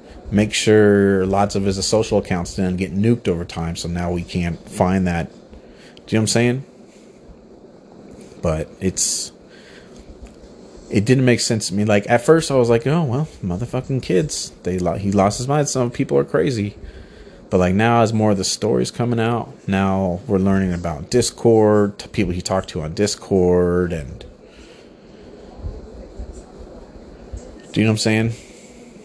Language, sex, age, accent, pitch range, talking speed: English, male, 30-49, American, 90-110 Hz, 165 wpm